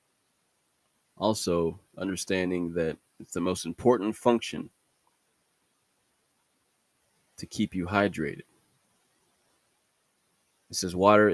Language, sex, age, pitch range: English, male, 20-39, 90-105 Hz